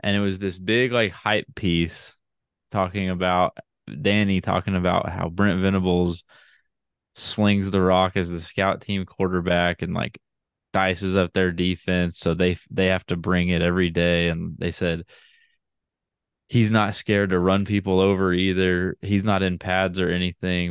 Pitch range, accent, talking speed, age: 90-105 Hz, American, 160 wpm, 20-39